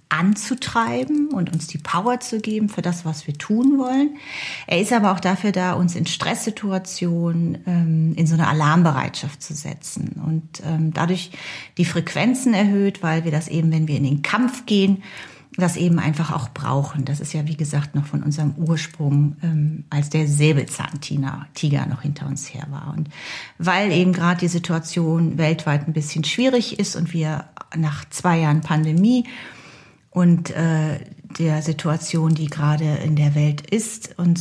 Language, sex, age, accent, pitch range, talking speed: German, female, 40-59, German, 150-175 Hz, 165 wpm